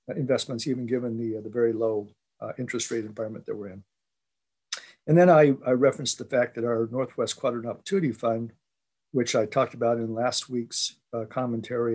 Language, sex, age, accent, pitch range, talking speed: English, male, 50-69, American, 115-130 Hz, 185 wpm